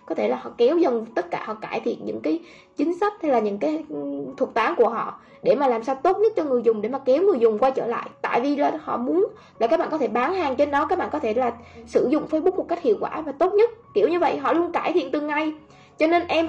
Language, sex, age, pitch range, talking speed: Vietnamese, female, 10-29, 245-345 Hz, 295 wpm